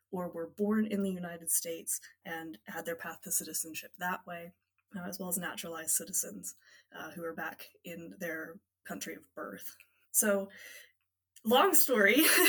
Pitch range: 160-200 Hz